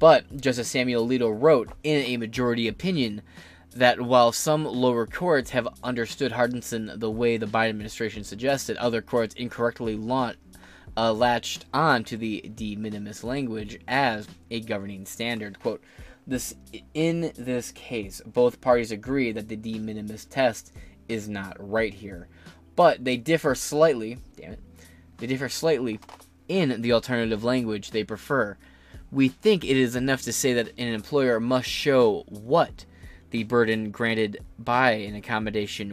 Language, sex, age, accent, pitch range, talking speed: English, male, 20-39, American, 105-125 Hz, 150 wpm